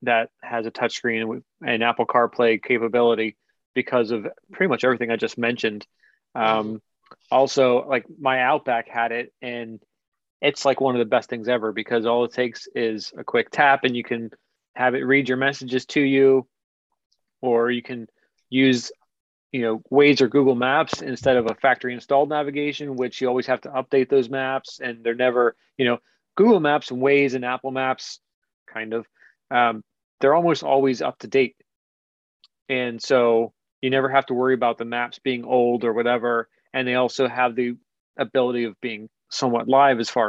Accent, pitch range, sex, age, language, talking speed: American, 115-135 Hz, male, 30-49, English, 180 wpm